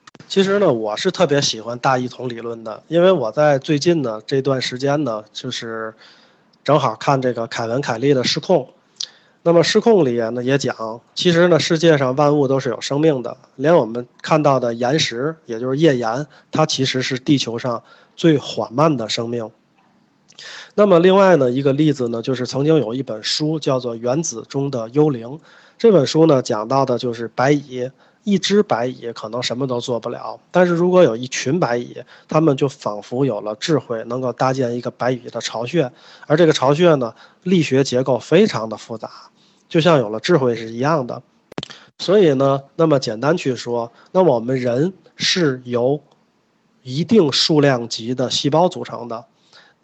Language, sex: Chinese, male